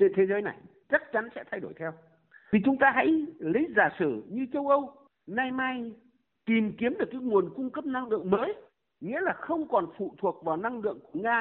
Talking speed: 220 wpm